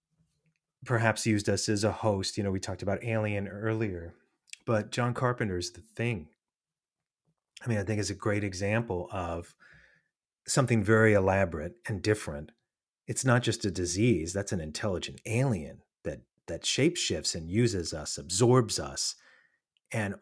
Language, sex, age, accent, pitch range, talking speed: English, male, 30-49, American, 85-115 Hz, 150 wpm